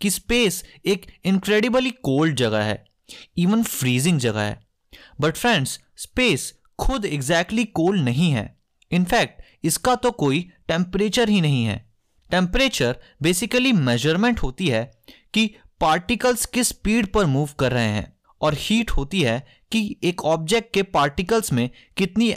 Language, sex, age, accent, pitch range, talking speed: Hindi, male, 20-39, native, 130-215 Hz, 140 wpm